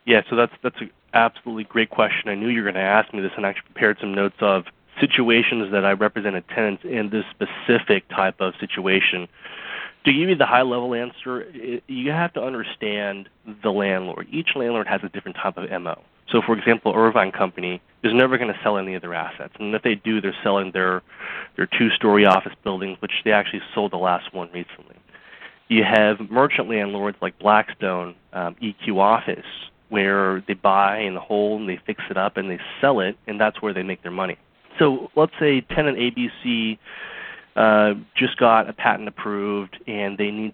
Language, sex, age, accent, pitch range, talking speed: English, male, 20-39, American, 95-115 Hz, 200 wpm